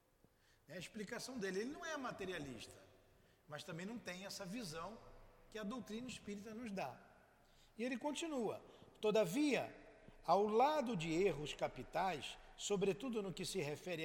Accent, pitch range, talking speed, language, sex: Brazilian, 165-230 Hz, 145 wpm, Portuguese, male